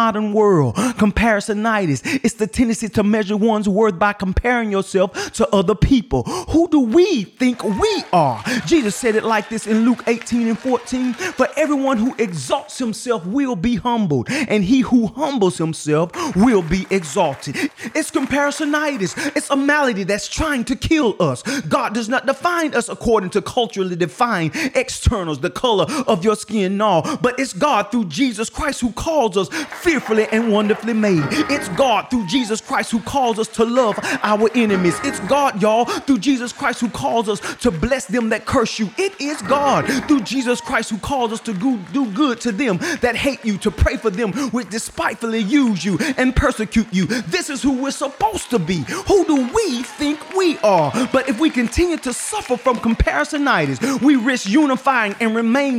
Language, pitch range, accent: English, 215-275 Hz, American